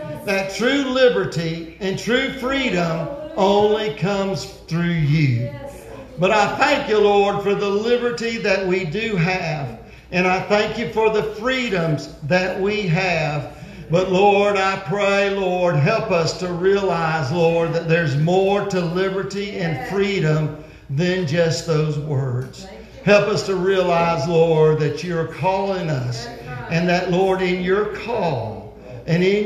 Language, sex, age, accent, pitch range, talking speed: English, male, 50-69, American, 150-205 Hz, 145 wpm